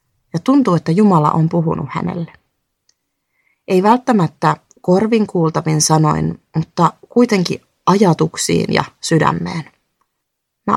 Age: 30-49